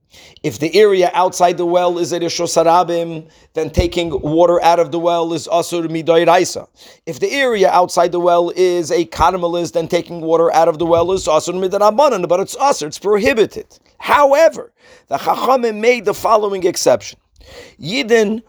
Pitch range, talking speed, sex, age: 160-195 Hz, 165 wpm, male, 40-59